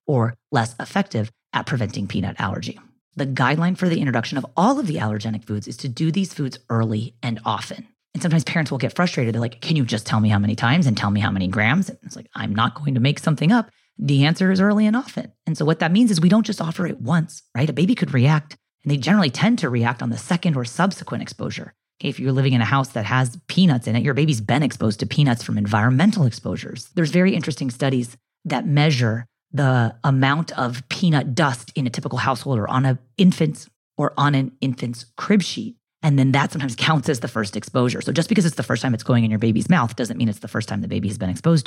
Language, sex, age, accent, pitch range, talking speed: English, female, 30-49, American, 120-165 Hz, 245 wpm